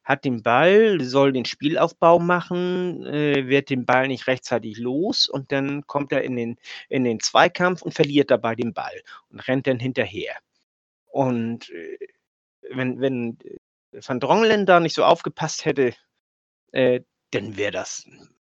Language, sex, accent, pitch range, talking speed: German, male, German, 120-165 Hz, 150 wpm